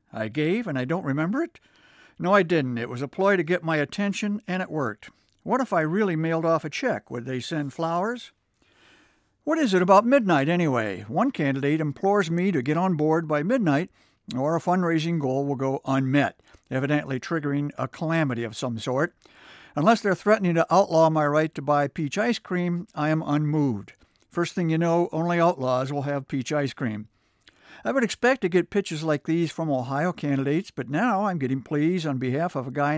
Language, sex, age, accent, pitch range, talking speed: English, male, 60-79, American, 135-180 Hz, 200 wpm